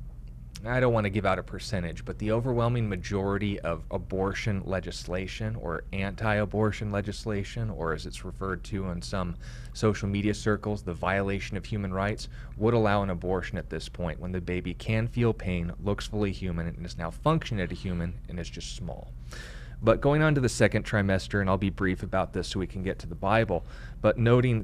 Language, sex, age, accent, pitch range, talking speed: English, male, 30-49, American, 90-110 Hz, 200 wpm